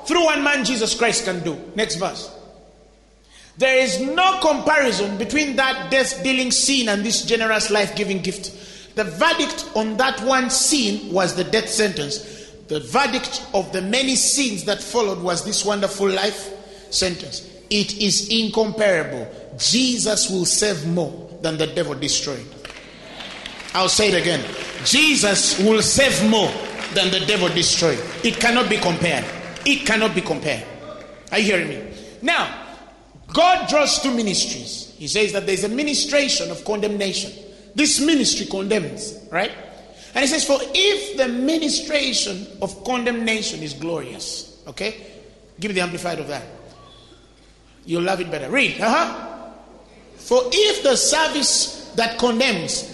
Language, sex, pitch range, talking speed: English, male, 195-265 Hz, 145 wpm